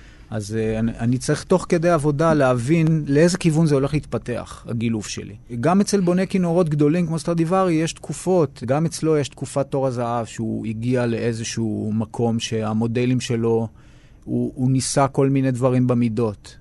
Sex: male